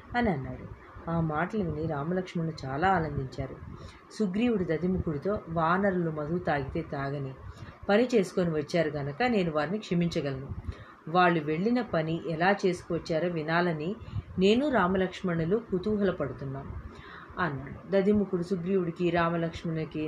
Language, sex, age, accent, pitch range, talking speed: Telugu, female, 30-49, native, 160-205 Hz, 100 wpm